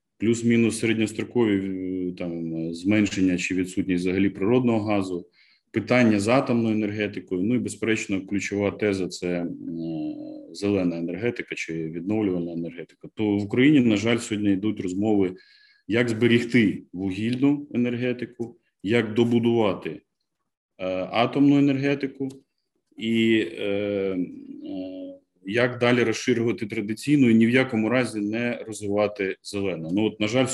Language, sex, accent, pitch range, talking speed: Ukrainian, male, native, 95-125 Hz, 120 wpm